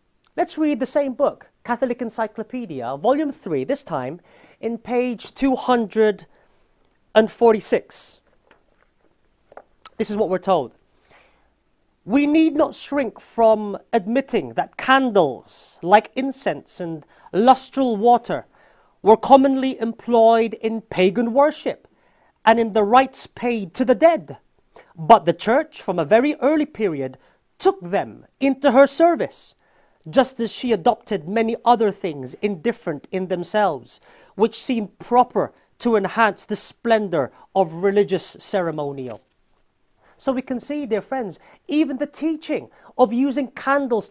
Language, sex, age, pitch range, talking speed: English, male, 40-59, 205-265 Hz, 125 wpm